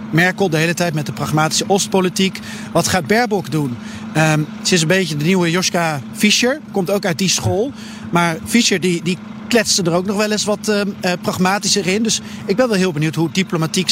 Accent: Dutch